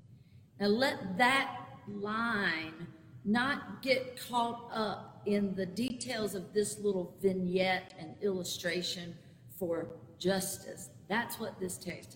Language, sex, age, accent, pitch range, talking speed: English, female, 50-69, American, 170-220 Hz, 115 wpm